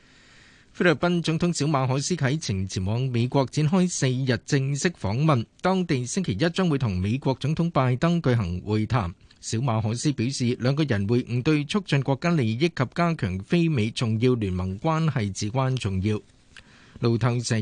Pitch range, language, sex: 110-150 Hz, Chinese, male